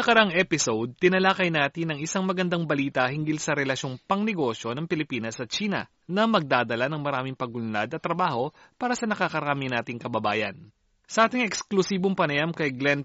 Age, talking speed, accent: 30-49, 160 wpm, native